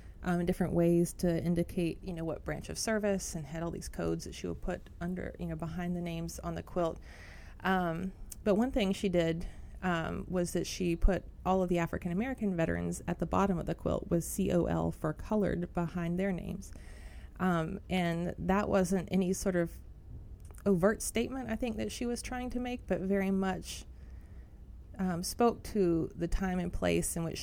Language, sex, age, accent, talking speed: English, female, 30-49, American, 195 wpm